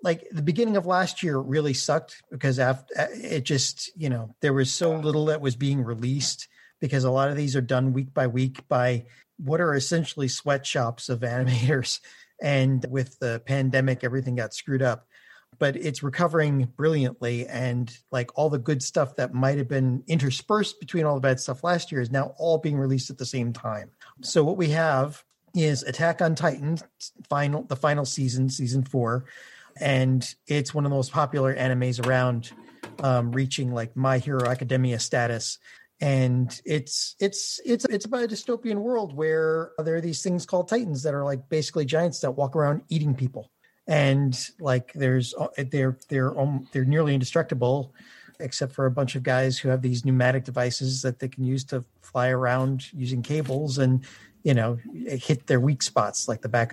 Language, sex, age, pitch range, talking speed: English, male, 40-59, 125-150 Hz, 180 wpm